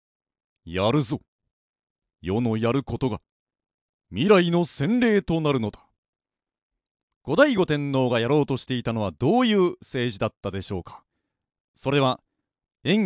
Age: 40-59